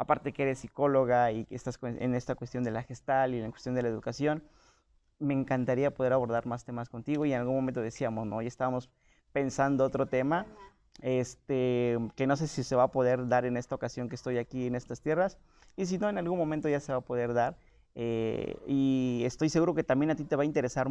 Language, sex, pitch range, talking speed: Spanish, male, 125-150 Hz, 230 wpm